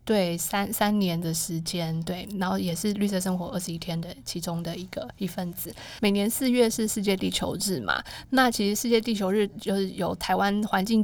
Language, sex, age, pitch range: Chinese, female, 20-39, 185-220 Hz